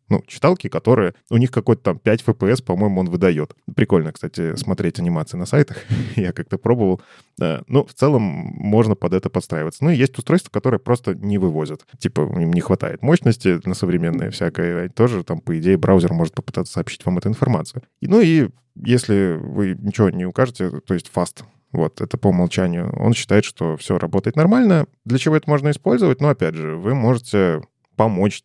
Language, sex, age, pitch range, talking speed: Russian, male, 20-39, 95-130 Hz, 180 wpm